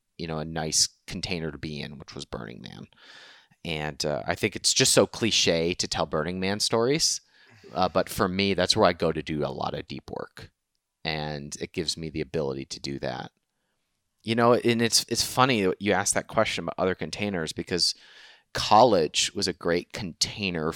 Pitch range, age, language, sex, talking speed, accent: 80-105 Hz, 30-49, English, male, 195 wpm, American